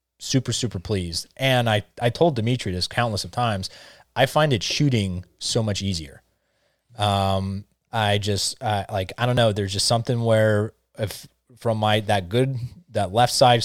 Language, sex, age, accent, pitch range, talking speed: English, male, 20-39, American, 100-115 Hz, 170 wpm